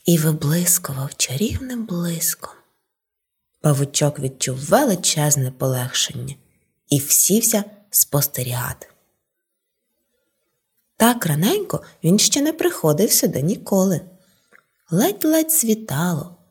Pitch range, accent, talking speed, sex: 155-230 Hz, native, 75 wpm, female